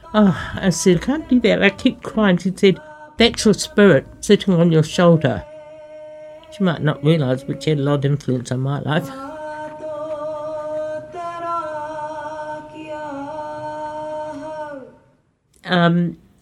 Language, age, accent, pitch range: English, 50-69, British, 145-215 Hz